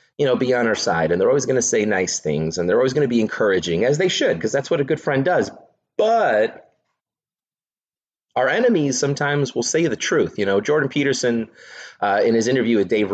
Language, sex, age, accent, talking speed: English, male, 30-49, American, 225 wpm